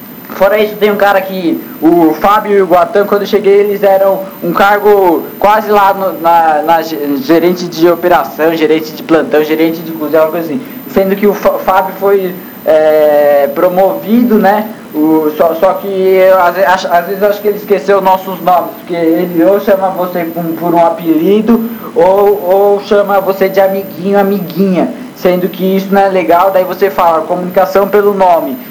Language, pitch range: Portuguese, 170-200 Hz